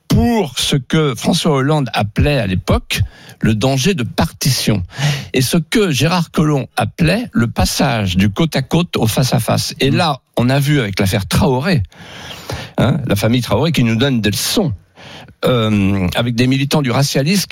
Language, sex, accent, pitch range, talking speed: French, male, French, 115-155 Hz, 175 wpm